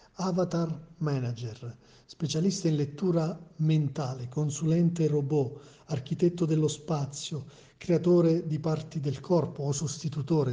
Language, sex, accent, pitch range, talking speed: Italian, male, native, 140-170 Hz, 105 wpm